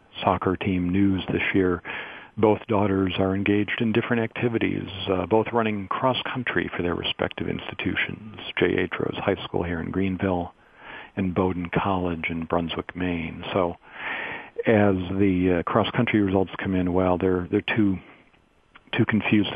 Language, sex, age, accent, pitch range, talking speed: English, male, 50-69, American, 90-100 Hz, 155 wpm